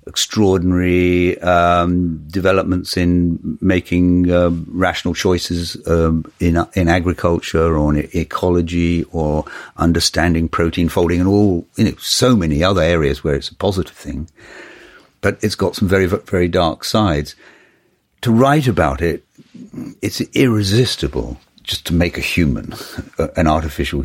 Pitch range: 75-90 Hz